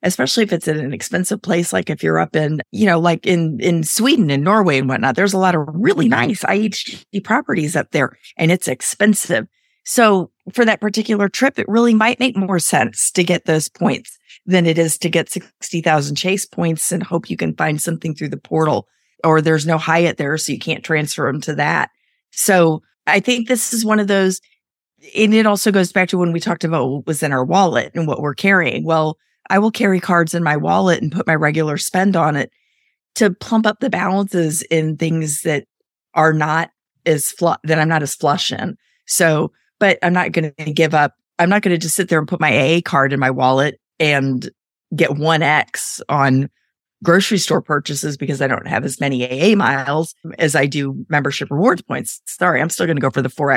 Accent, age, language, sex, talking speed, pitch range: American, 40-59, English, female, 215 wpm, 150-195 Hz